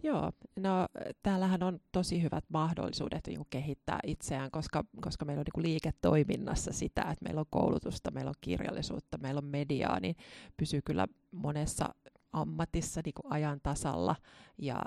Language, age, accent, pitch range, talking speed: Finnish, 30-49, native, 140-165 Hz, 145 wpm